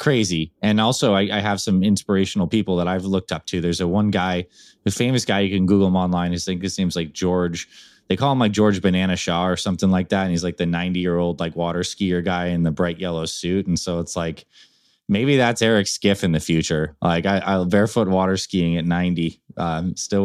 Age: 20-39